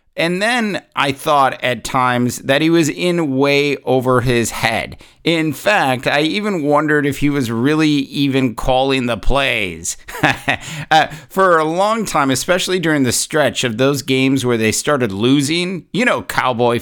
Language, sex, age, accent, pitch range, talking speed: English, male, 50-69, American, 130-160 Hz, 165 wpm